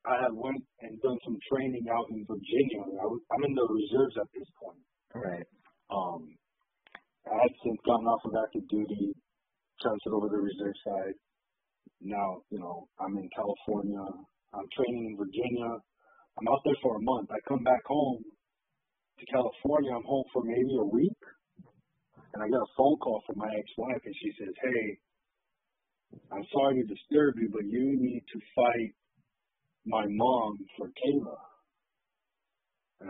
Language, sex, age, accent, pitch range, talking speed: English, male, 40-59, American, 105-135 Hz, 160 wpm